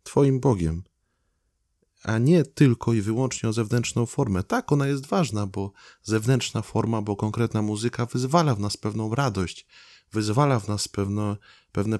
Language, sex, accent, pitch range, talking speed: Polish, male, native, 105-140 Hz, 150 wpm